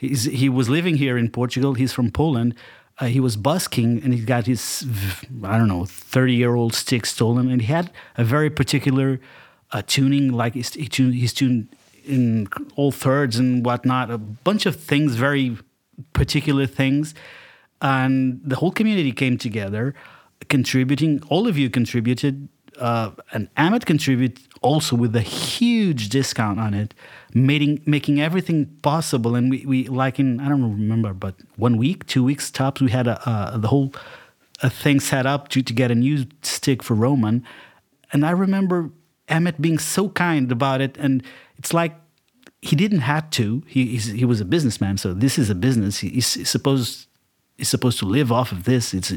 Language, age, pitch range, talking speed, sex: English, 30-49, 120-145 Hz, 170 wpm, male